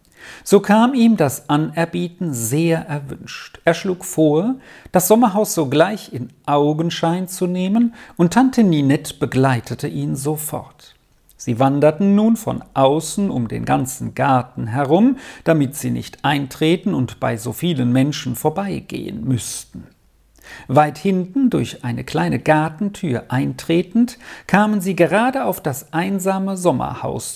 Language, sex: German, male